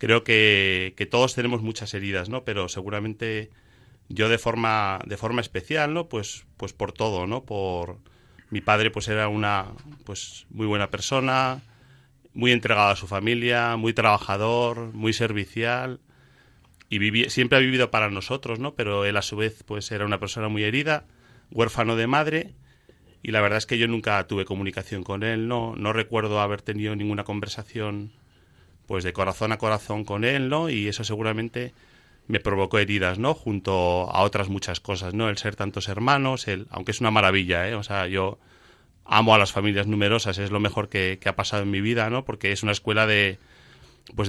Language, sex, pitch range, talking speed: Spanish, male, 100-115 Hz, 185 wpm